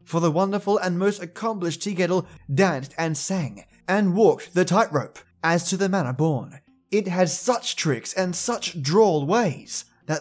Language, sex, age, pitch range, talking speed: English, male, 20-39, 135-180 Hz, 170 wpm